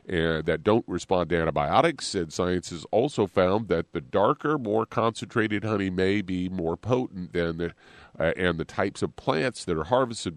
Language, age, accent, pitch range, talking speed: English, 40-59, American, 85-100 Hz, 185 wpm